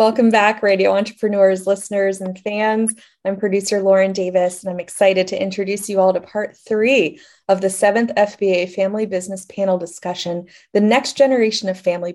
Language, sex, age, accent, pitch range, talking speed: English, female, 20-39, American, 190-230 Hz, 170 wpm